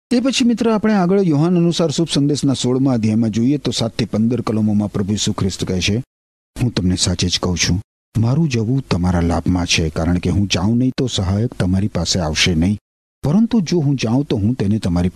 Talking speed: 200 wpm